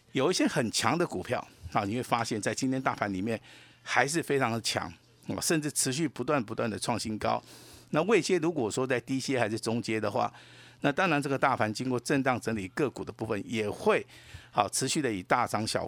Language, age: Chinese, 50-69